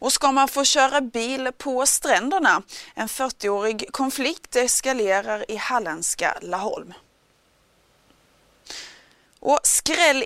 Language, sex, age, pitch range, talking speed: Swedish, female, 30-49, 200-255 Hz, 100 wpm